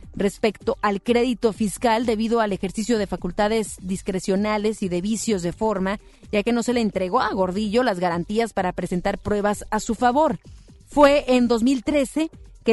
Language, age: Spanish, 30-49